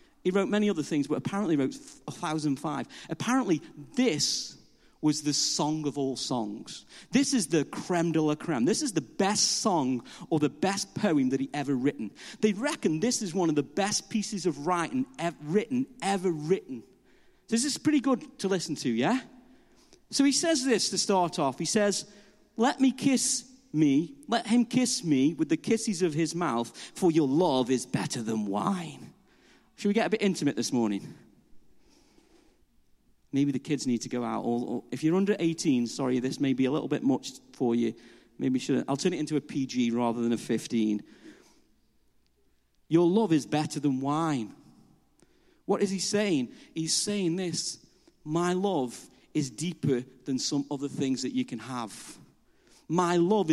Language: English